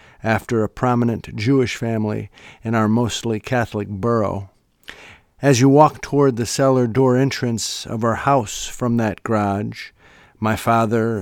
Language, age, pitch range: English, 50-69, 105-125 Hz